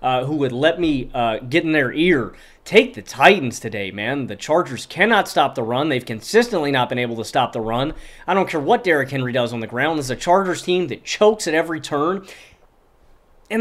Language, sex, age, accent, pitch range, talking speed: English, male, 30-49, American, 135-190 Hz, 220 wpm